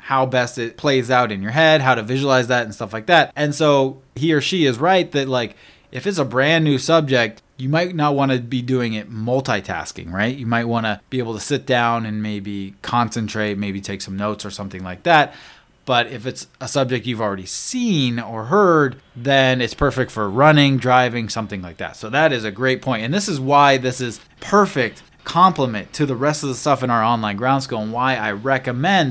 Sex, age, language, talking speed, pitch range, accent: male, 20-39, English, 220 wpm, 115-145 Hz, American